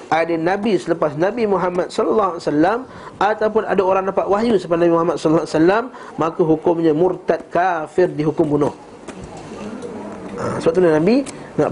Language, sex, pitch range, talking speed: Malay, male, 165-225 Hz, 155 wpm